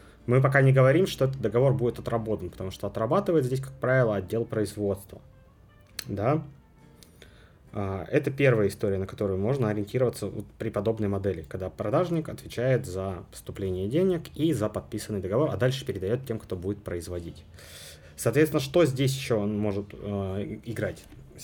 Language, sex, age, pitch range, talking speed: Russian, male, 20-39, 105-135 Hz, 145 wpm